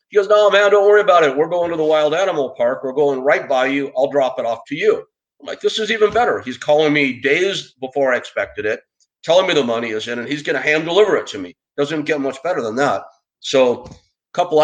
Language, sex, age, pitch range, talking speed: English, male, 50-69, 120-170 Hz, 265 wpm